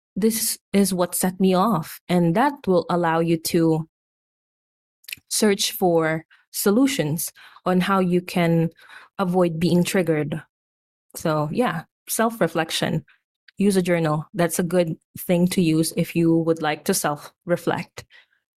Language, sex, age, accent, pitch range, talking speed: English, female, 20-39, Filipino, 165-195 Hz, 130 wpm